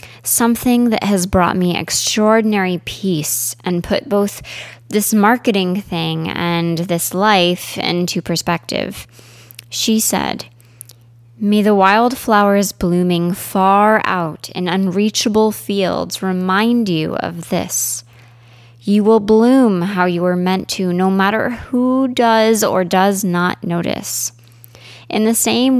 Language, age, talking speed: English, 20-39, 120 wpm